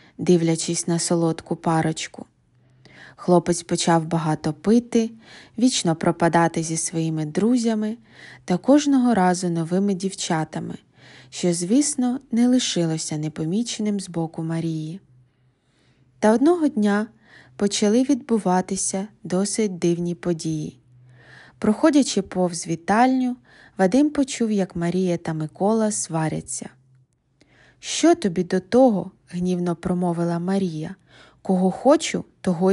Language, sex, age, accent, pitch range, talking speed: Ukrainian, female, 20-39, native, 165-225 Hz, 100 wpm